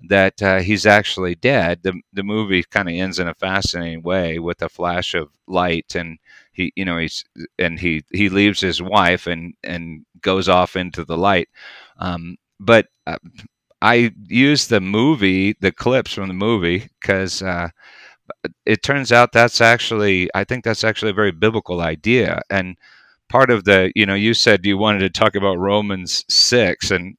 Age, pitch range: 40-59, 90-110 Hz